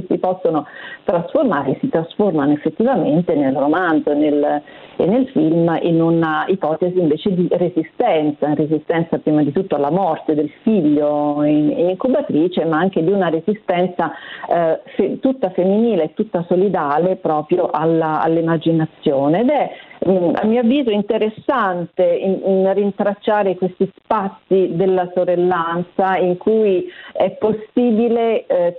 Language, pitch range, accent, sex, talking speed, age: Italian, 160-190 Hz, native, female, 130 wpm, 40-59